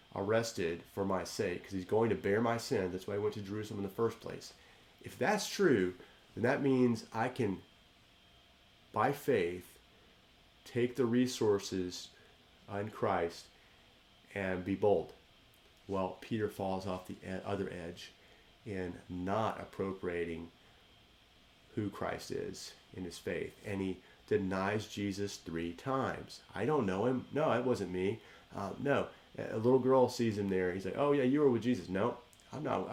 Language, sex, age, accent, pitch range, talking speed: English, male, 30-49, American, 95-115 Hz, 160 wpm